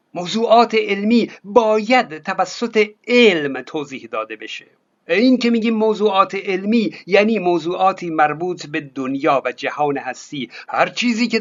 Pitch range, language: 170-225 Hz, Persian